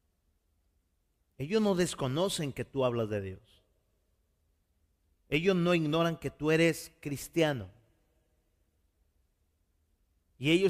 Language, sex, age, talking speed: Spanish, male, 40-59, 95 wpm